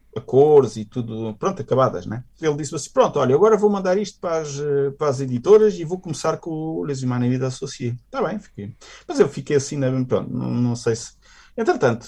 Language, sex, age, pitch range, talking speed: Portuguese, male, 50-69, 130-205 Hz, 210 wpm